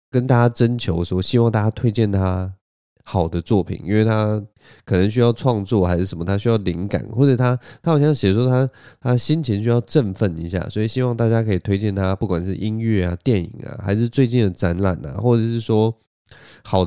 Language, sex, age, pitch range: Chinese, male, 20-39, 95-120 Hz